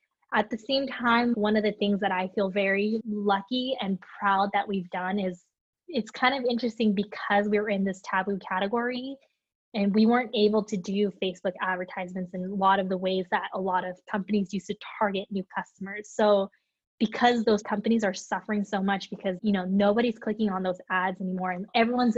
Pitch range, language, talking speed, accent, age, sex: 190-225 Hz, English, 200 wpm, American, 10-29, female